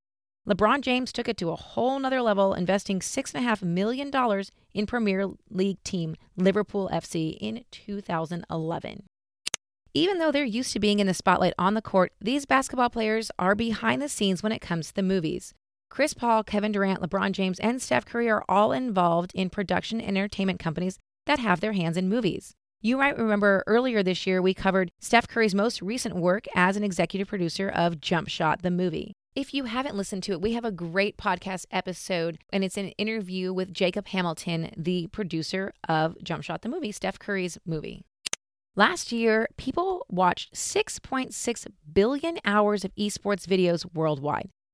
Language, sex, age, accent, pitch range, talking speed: English, female, 30-49, American, 180-230 Hz, 175 wpm